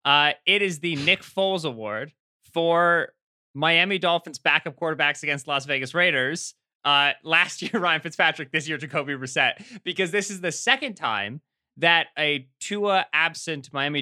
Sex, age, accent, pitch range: male, 20-39, American, 125-170 Hz